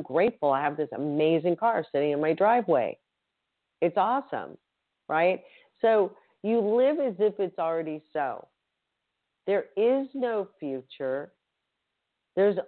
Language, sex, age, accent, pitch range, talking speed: English, female, 40-59, American, 155-215 Hz, 125 wpm